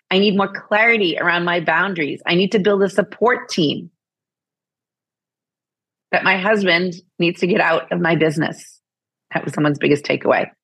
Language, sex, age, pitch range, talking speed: English, female, 30-49, 160-200 Hz, 165 wpm